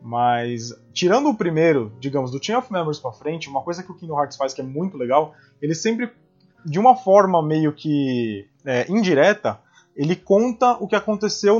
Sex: male